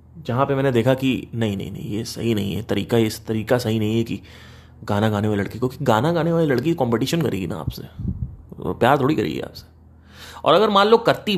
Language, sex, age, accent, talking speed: Hindi, male, 30-49, native, 225 wpm